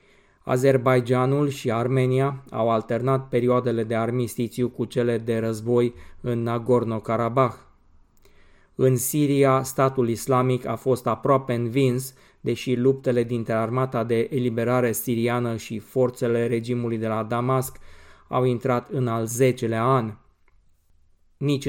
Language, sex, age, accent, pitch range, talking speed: Romanian, male, 20-39, native, 115-130 Hz, 115 wpm